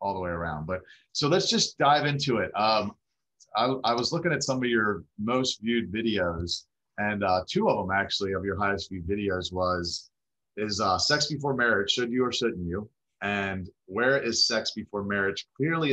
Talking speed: 195 wpm